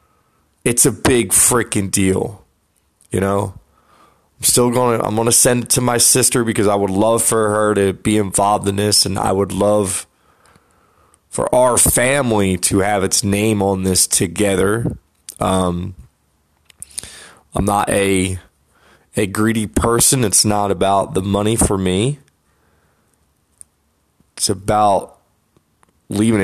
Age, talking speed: 20-39, 140 wpm